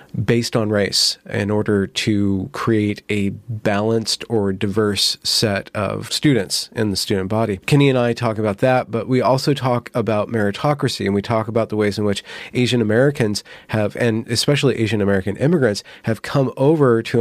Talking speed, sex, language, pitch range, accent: 175 wpm, male, English, 105-120 Hz, American